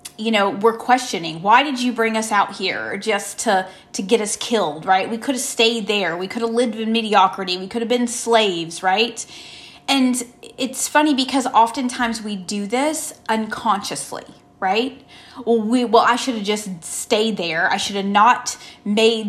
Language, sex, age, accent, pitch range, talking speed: English, female, 30-49, American, 205-245 Hz, 185 wpm